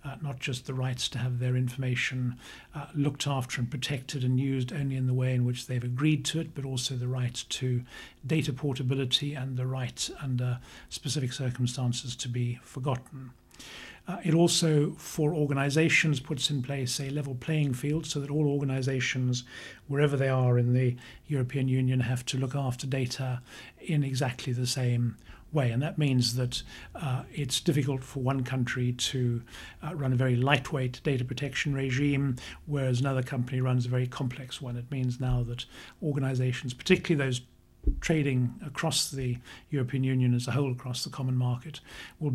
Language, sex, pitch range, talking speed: English, male, 125-140 Hz, 175 wpm